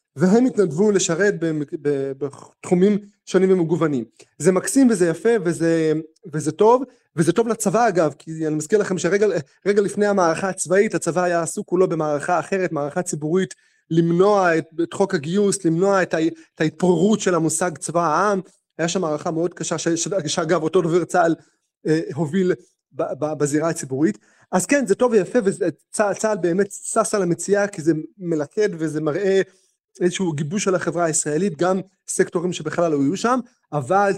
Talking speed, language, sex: 145 wpm, Hebrew, male